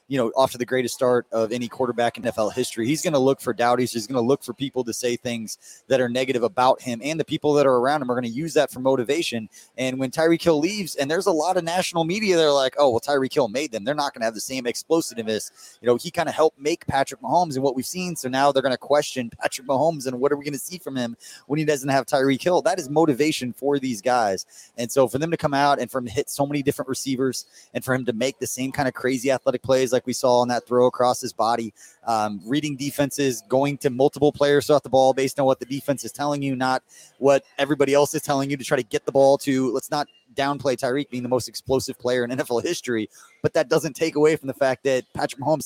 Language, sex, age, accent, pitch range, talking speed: English, male, 20-39, American, 125-145 Hz, 275 wpm